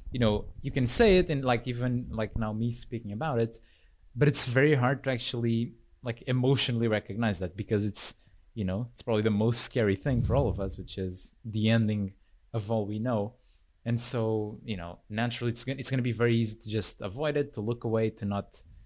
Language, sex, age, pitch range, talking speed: English, male, 20-39, 100-120 Hz, 215 wpm